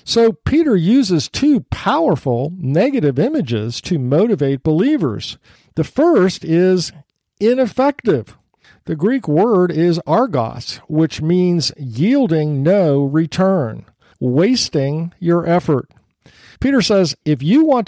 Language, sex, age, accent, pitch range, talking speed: English, male, 50-69, American, 140-185 Hz, 105 wpm